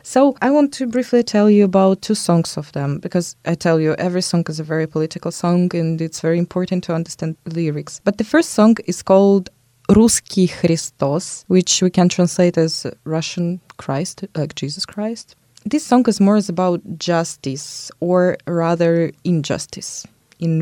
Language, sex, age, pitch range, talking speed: English, female, 20-39, 160-215 Hz, 170 wpm